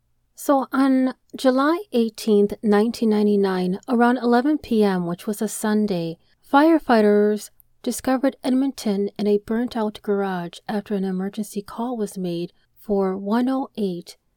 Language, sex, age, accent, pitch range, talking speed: English, female, 40-59, American, 195-240 Hz, 115 wpm